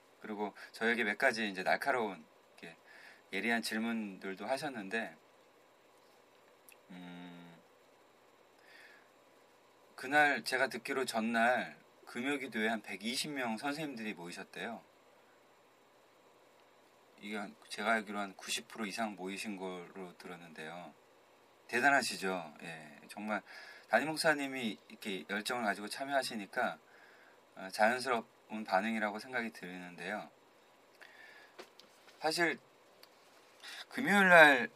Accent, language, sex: native, Korean, male